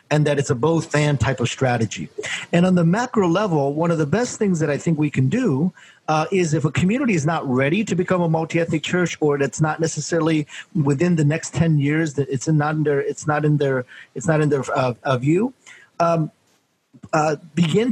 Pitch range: 140-170 Hz